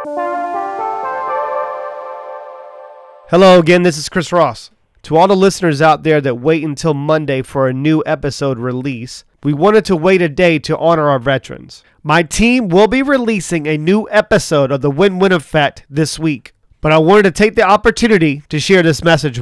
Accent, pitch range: American, 135-180 Hz